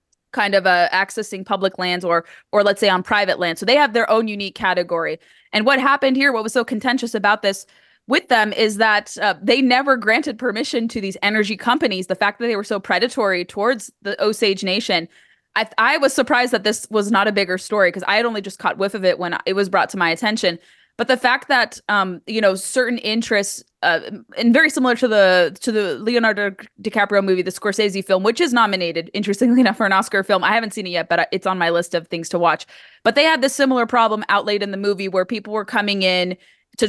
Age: 20-39